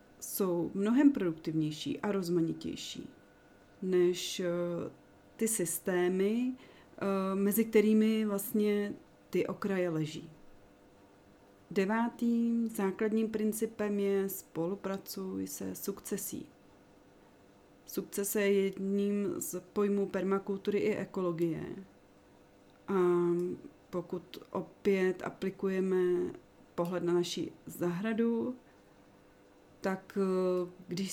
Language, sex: Czech, female